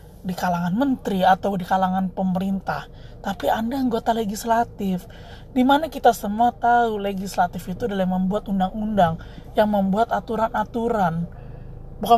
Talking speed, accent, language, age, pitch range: 120 wpm, native, Indonesian, 20-39, 195-285 Hz